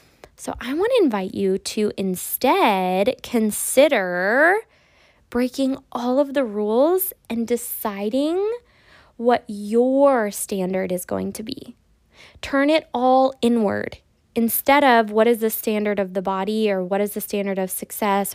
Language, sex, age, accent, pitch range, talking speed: English, female, 20-39, American, 200-255 Hz, 140 wpm